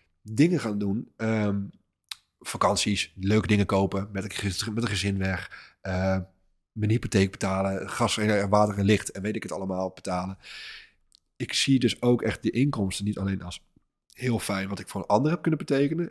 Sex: male